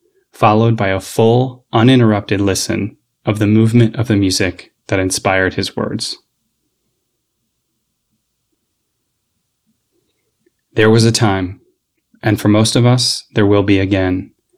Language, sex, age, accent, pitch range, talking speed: English, male, 20-39, American, 100-115 Hz, 120 wpm